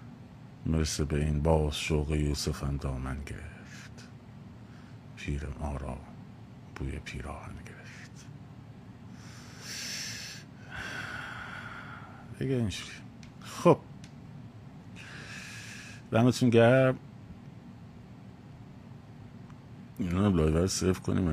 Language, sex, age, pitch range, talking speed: Persian, male, 50-69, 75-105 Hz, 50 wpm